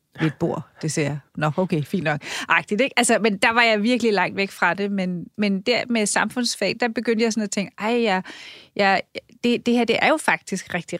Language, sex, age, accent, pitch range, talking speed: Danish, female, 30-49, native, 185-225 Hz, 235 wpm